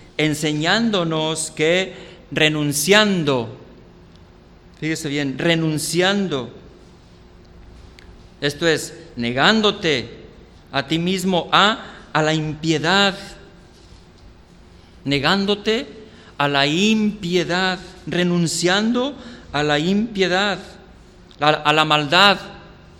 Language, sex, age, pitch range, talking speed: Spanish, male, 50-69, 145-195 Hz, 75 wpm